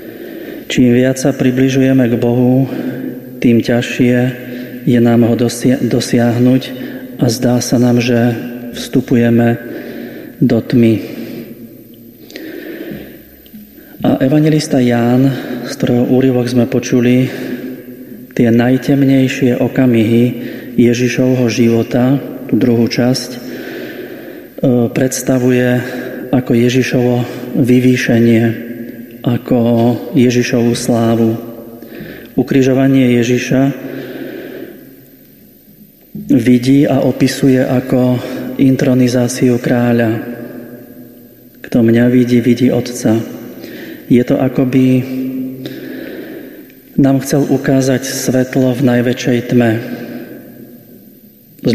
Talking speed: 80 wpm